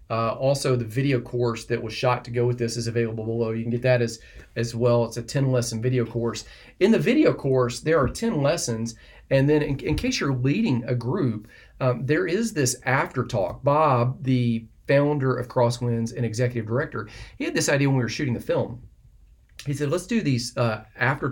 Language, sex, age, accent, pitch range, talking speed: English, male, 40-59, American, 115-130 Hz, 210 wpm